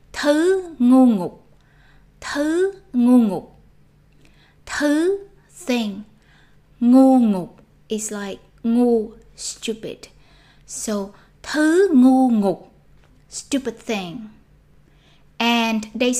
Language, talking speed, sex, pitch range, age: Vietnamese, 80 wpm, female, 205-265 Hz, 20-39